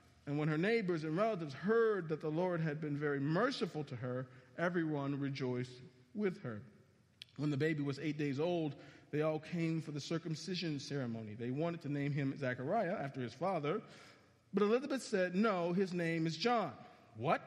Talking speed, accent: 180 wpm, American